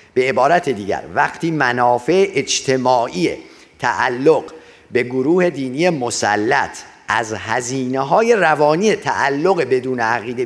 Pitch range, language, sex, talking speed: 125-165 Hz, Persian, male, 100 wpm